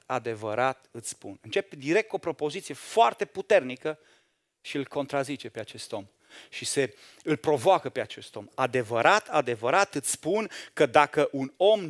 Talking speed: 155 wpm